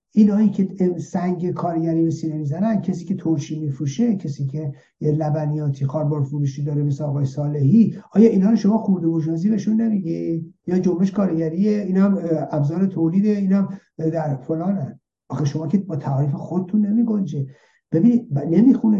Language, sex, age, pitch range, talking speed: Persian, male, 60-79, 155-215 Hz, 160 wpm